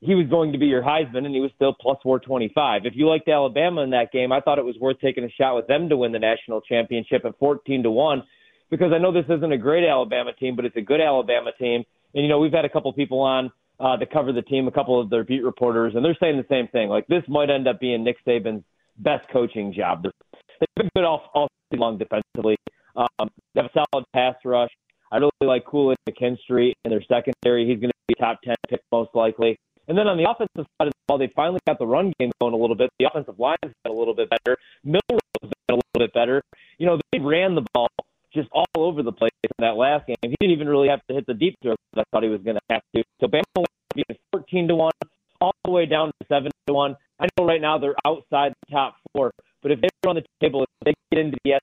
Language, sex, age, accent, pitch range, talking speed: English, male, 30-49, American, 120-155 Hz, 260 wpm